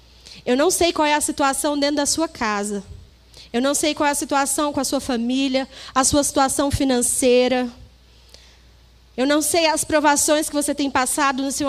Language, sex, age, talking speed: Portuguese, female, 20-39, 190 wpm